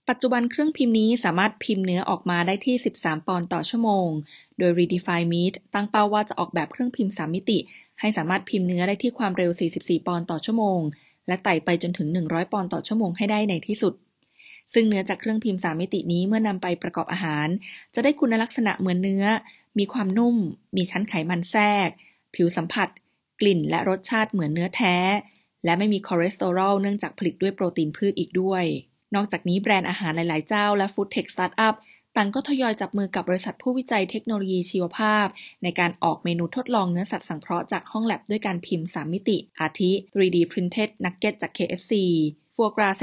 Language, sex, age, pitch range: Thai, female, 20-39, 175-210 Hz